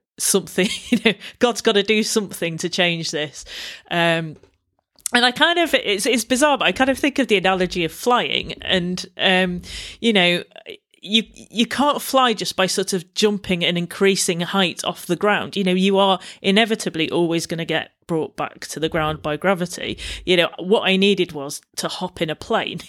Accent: British